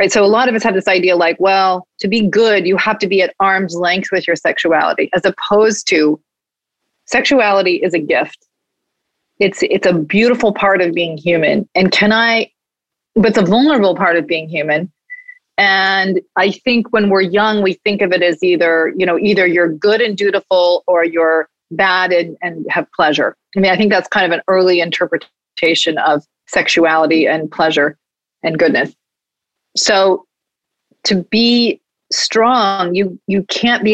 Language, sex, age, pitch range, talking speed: English, female, 30-49, 175-215 Hz, 175 wpm